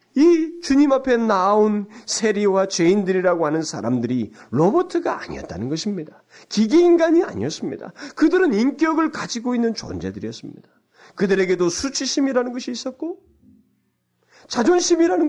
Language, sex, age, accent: Korean, male, 40-59, native